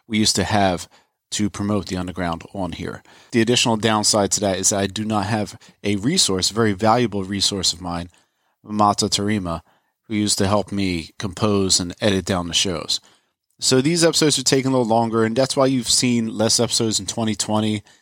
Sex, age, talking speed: male, 30-49, 190 wpm